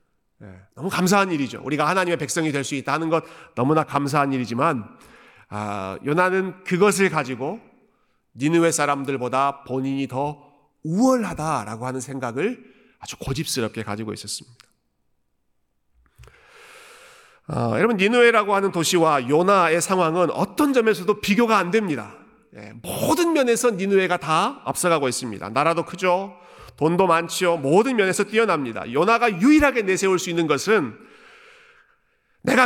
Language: Korean